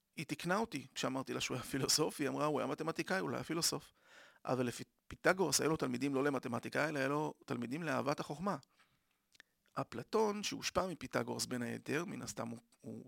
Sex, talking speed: male, 180 wpm